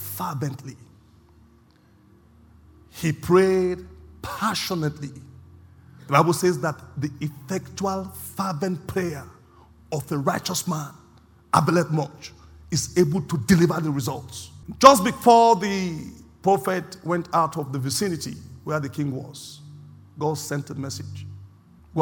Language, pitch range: English, 105-175 Hz